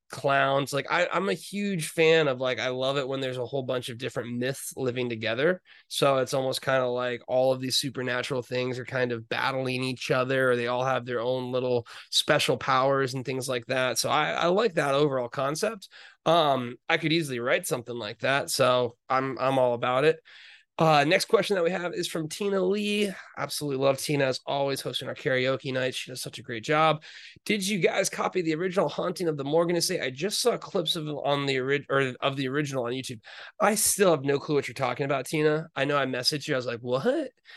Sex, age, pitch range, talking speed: male, 20-39, 130-160 Hz, 225 wpm